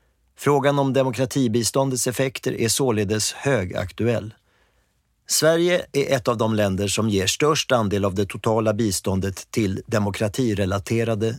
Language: Swedish